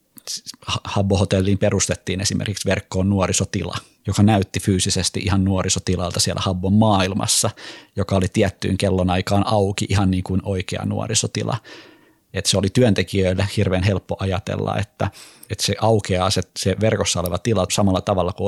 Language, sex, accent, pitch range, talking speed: Finnish, male, native, 95-105 Hz, 135 wpm